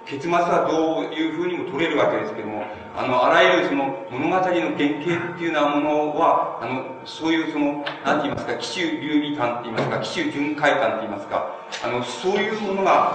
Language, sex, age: Japanese, male, 40-59